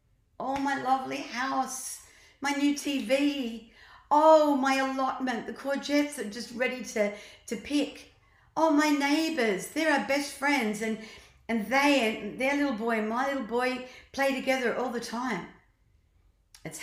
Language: English